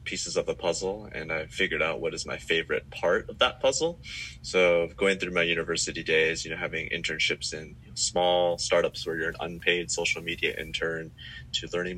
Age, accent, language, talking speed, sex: 20-39, American, English, 190 wpm, male